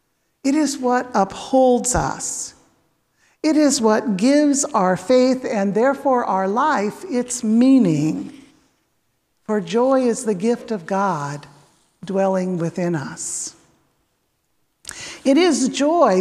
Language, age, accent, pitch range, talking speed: English, 60-79, American, 195-270 Hz, 110 wpm